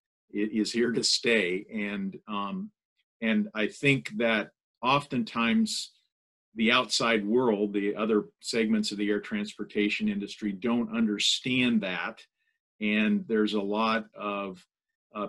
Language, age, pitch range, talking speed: English, 50-69, 105-155 Hz, 120 wpm